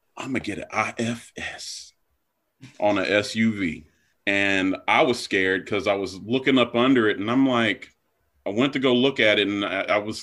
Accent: American